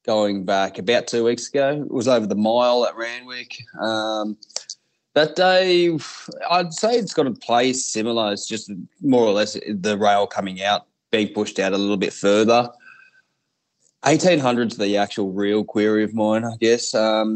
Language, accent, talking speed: English, Australian, 170 wpm